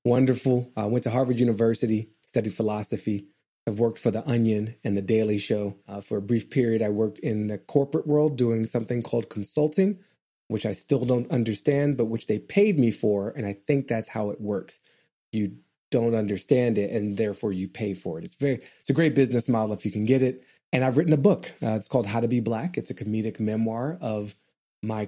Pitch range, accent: 110-135 Hz, American